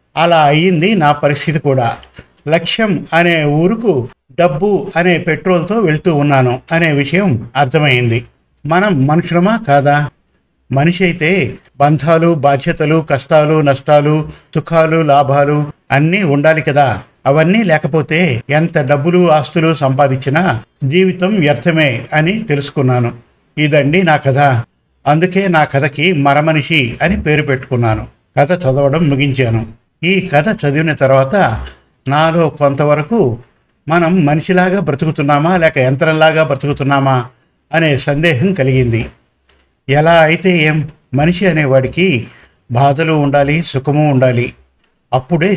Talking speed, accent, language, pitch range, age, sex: 105 wpm, native, Telugu, 135-165 Hz, 50-69, male